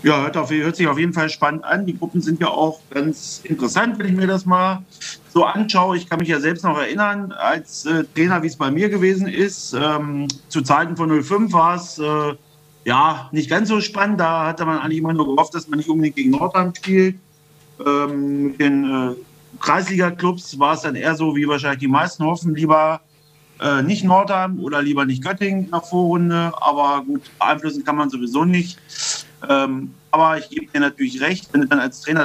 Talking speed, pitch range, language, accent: 210 wpm, 145-185 Hz, German, German